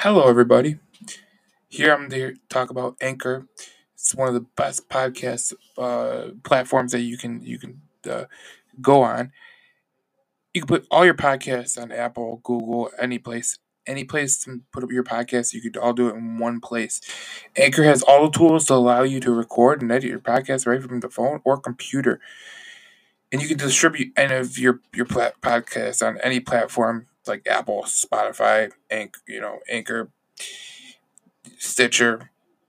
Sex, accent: male, American